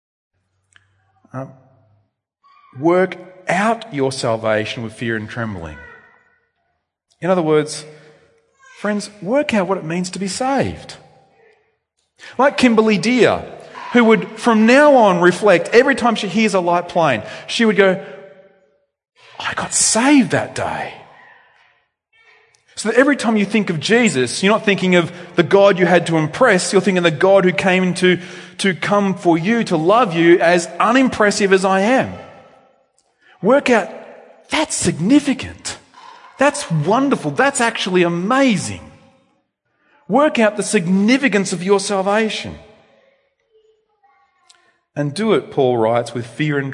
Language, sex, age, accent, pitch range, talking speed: English, male, 30-49, Australian, 170-245 Hz, 135 wpm